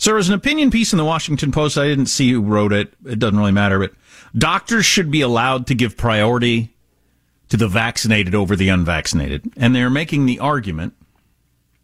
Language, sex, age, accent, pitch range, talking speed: English, male, 50-69, American, 100-135 Hz, 200 wpm